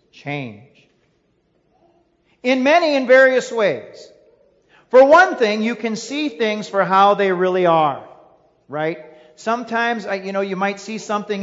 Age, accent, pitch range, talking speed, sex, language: 40-59, American, 160-240 Hz, 135 wpm, male, English